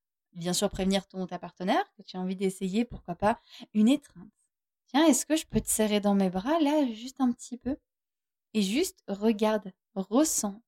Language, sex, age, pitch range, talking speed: French, female, 20-39, 185-225 Hz, 195 wpm